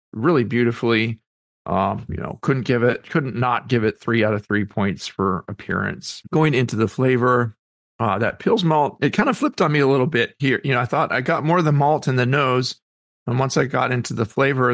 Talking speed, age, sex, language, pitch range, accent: 230 wpm, 40-59, male, English, 110-135 Hz, American